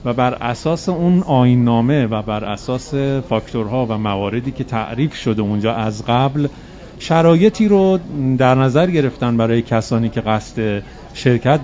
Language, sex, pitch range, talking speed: Persian, male, 110-150 Hz, 145 wpm